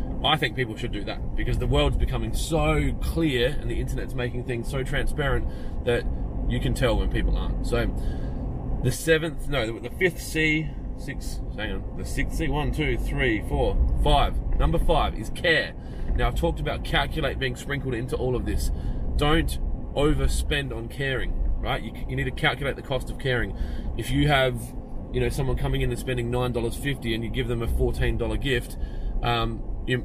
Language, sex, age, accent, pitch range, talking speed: English, male, 20-39, Australian, 110-130 Hz, 185 wpm